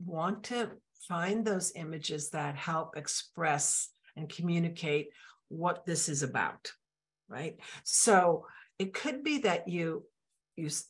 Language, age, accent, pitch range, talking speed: English, 60-79, American, 155-215 Hz, 120 wpm